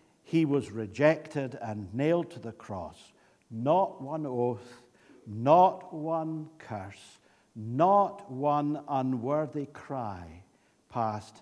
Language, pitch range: English, 125-195 Hz